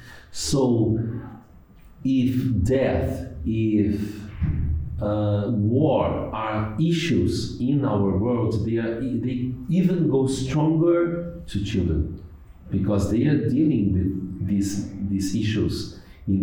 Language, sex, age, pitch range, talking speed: English, male, 50-69, 105-135 Hz, 100 wpm